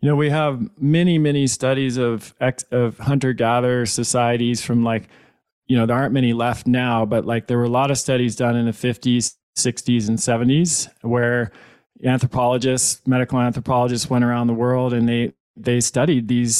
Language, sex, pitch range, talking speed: English, male, 120-135 Hz, 175 wpm